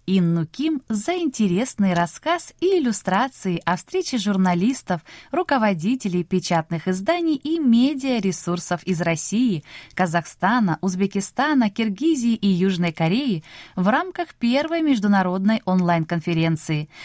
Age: 20-39